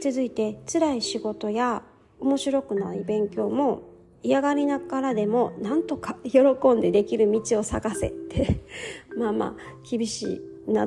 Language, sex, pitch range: Japanese, female, 195-285 Hz